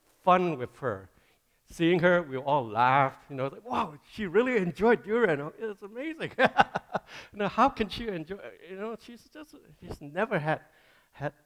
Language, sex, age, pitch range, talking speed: English, male, 60-79, 105-150 Hz, 180 wpm